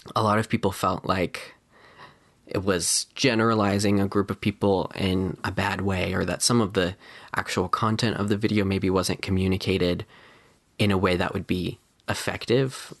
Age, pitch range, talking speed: 20-39, 95-115 Hz, 170 wpm